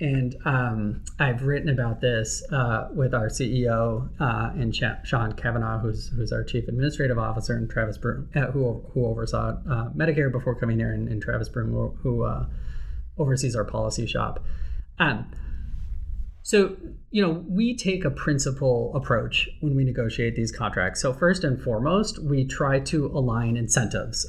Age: 30-49